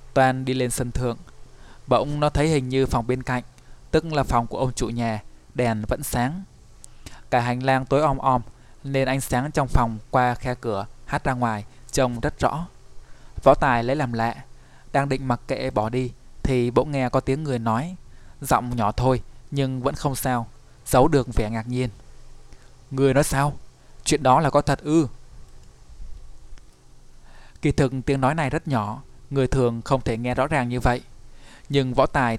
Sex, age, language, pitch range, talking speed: male, 20-39, Vietnamese, 115-135 Hz, 185 wpm